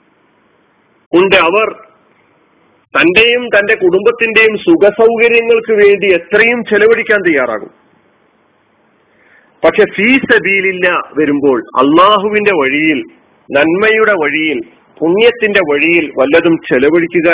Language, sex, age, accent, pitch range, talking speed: Malayalam, male, 40-59, native, 160-265 Hz, 70 wpm